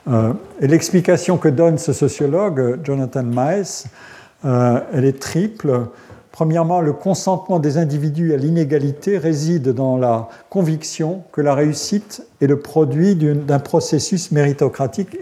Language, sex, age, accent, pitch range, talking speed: French, male, 50-69, French, 125-160 Hz, 130 wpm